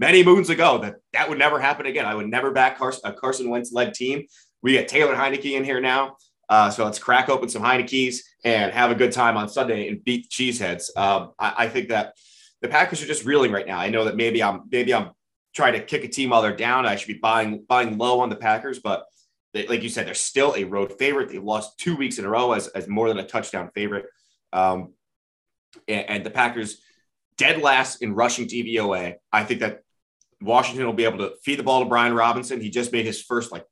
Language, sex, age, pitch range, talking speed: English, male, 30-49, 105-125 Hz, 235 wpm